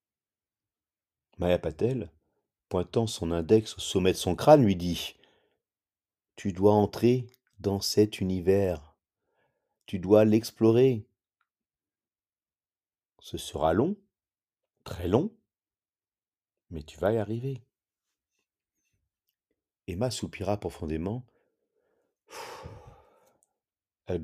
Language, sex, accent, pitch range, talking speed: French, male, French, 90-125 Hz, 85 wpm